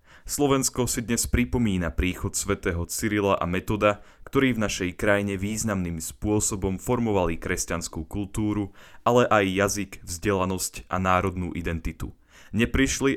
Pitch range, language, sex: 85-110 Hz, Slovak, male